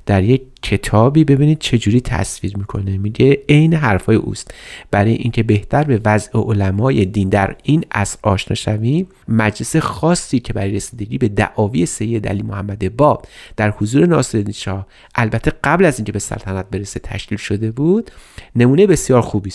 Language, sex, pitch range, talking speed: Persian, male, 105-145 Hz, 155 wpm